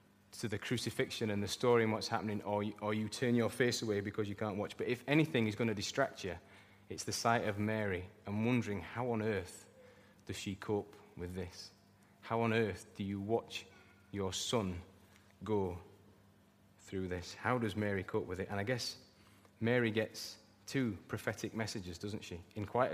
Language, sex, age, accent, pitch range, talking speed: English, male, 30-49, British, 100-115 Hz, 190 wpm